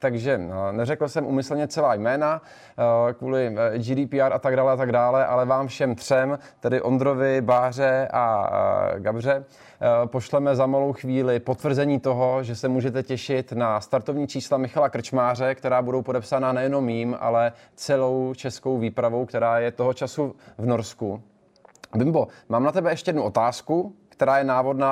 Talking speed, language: 150 wpm, Czech